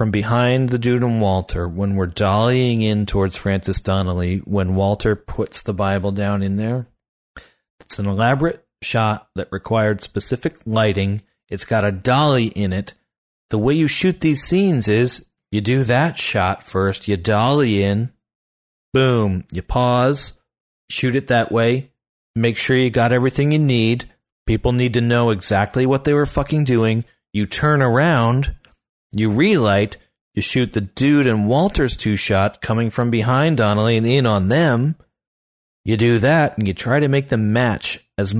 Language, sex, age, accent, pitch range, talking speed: English, male, 40-59, American, 105-135 Hz, 165 wpm